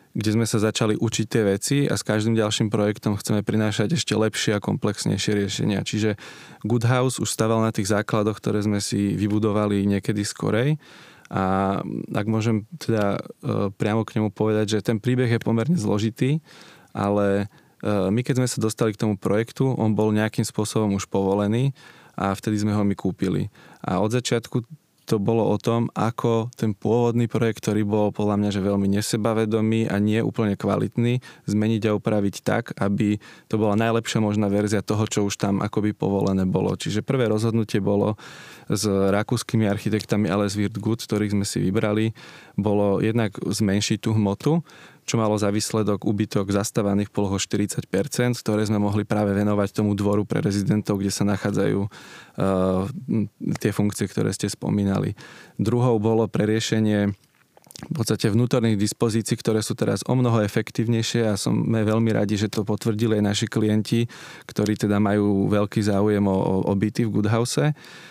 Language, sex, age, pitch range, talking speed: Slovak, male, 20-39, 105-115 Hz, 160 wpm